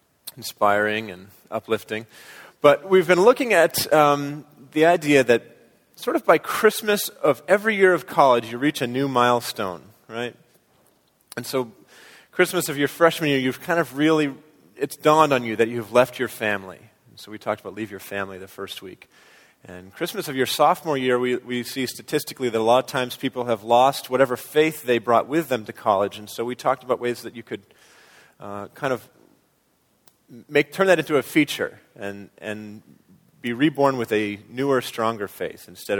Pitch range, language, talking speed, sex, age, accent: 105-145 Hz, English, 185 wpm, male, 30-49, American